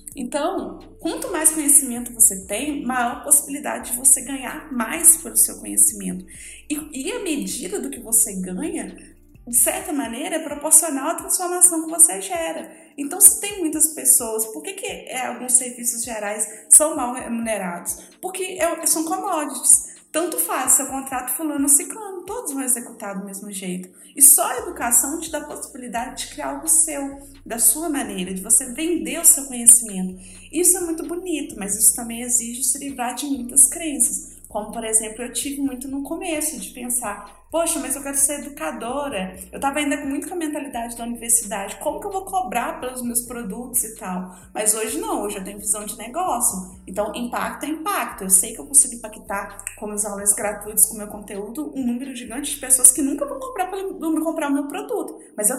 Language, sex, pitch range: Portuguese, female, 225-315 Hz